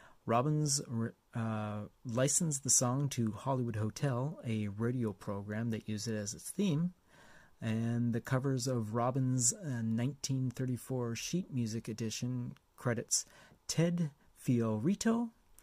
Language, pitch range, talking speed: English, 110-150 Hz, 115 wpm